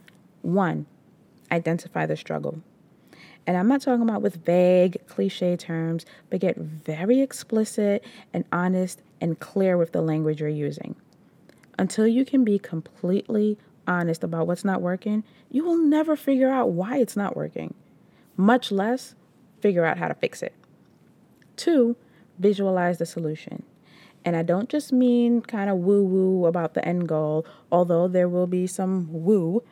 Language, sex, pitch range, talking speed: English, female, 175-230 Hz, 150 wpm